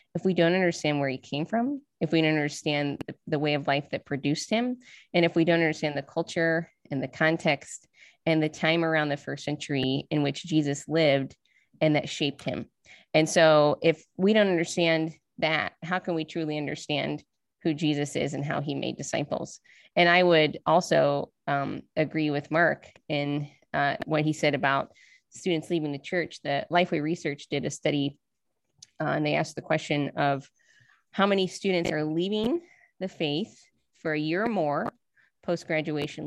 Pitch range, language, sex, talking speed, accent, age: 145-170 Hz, English, female, 180 wpm, American, 20-39